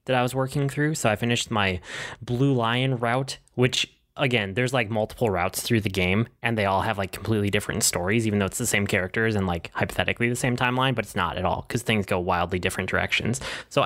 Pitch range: 105-135 Hz